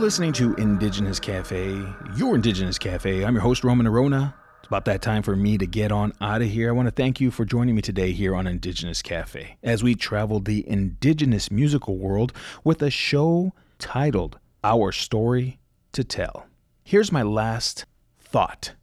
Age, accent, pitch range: 30-49, American, 95-125 Hz